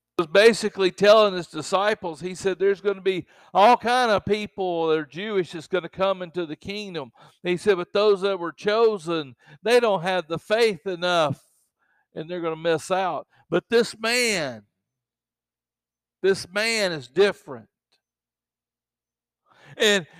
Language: English